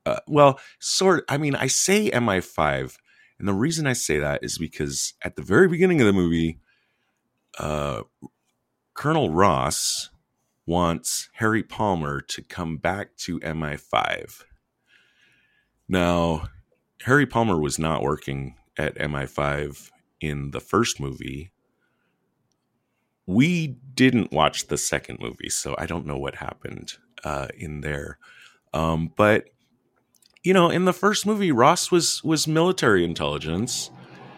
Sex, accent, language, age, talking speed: male, American, English, 30-49, 130 wpm